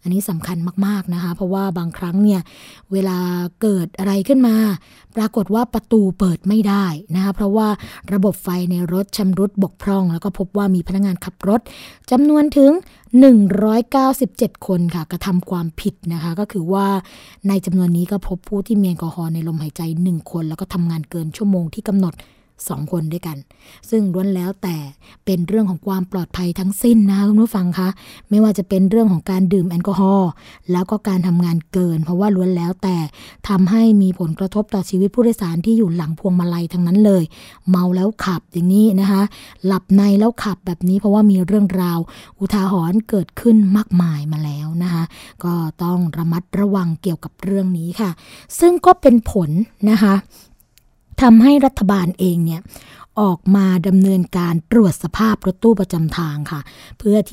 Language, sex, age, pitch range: Thai, female, 20-39, 175-205 Hz